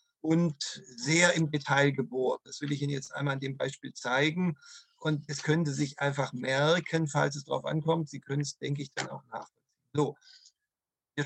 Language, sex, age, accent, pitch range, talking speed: Swedish, male, 50-69, German, 135-160 Hz, 185 wpm